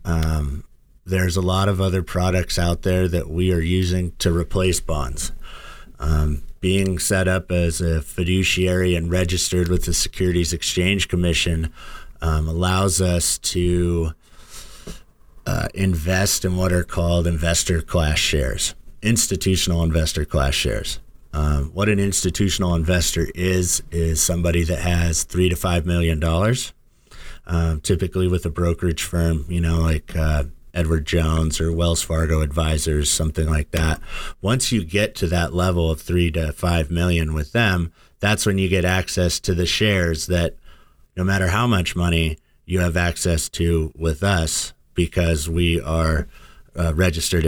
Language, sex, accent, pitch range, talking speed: English, male, American, 80-90 Hz, 150 wpm